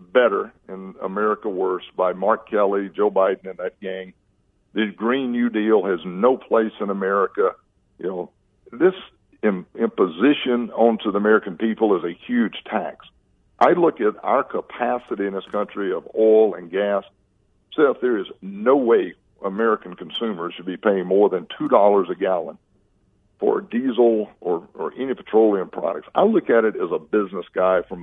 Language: English